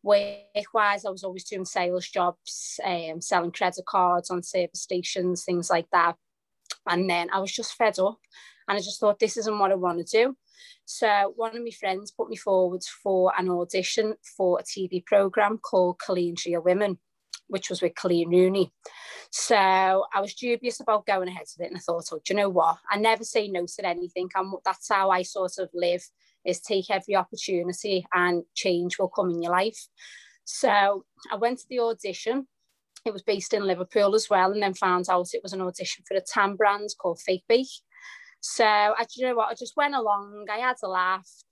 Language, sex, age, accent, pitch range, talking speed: English, female, 30-49, British, 180-210 Hz, 205 wpm